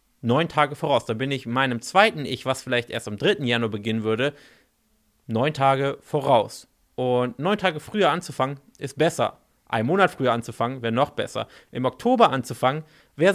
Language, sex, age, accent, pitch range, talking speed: German, male, 30-49, German, 125-160 Hz, 170 wpm